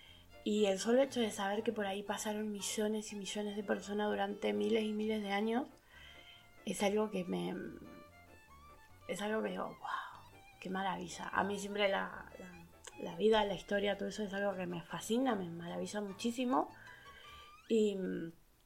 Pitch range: 180-215 Hz